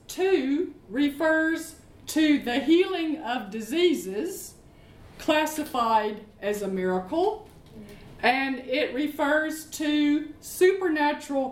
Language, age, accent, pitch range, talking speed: English, 50-69, American, 225-320 Hz, 85 wpm